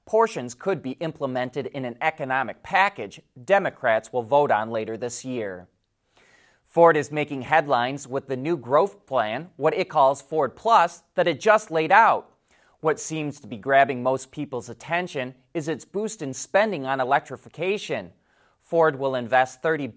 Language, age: English, 30-49